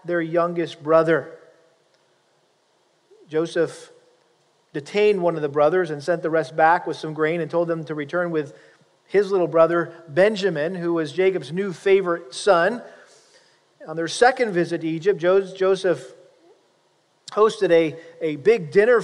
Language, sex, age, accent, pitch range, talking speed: English, male, 40-59, American, 170-205 Hz, 140 wpm